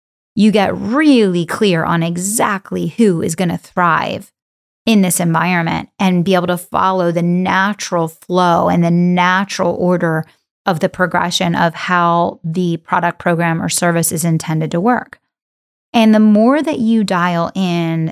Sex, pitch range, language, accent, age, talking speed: female, 170-205 Hz, English, American, 30-49, 150 wpm